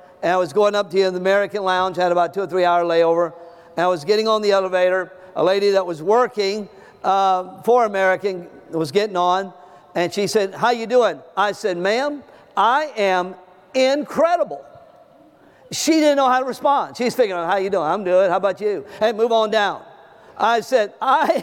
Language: English